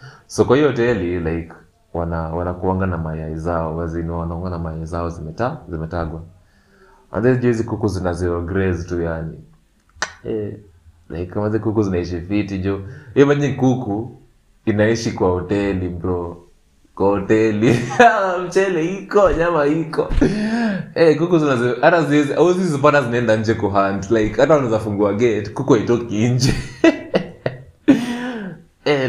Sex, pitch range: male, 85-115 Hz